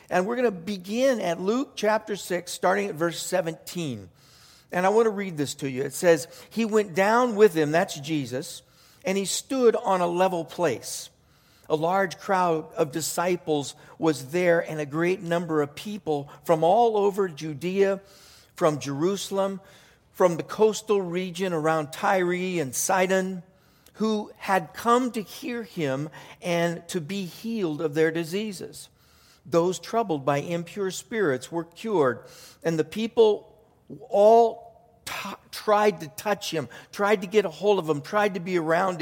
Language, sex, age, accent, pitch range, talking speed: English, male, 50-69, American, 160-205 Hz, 160 wpm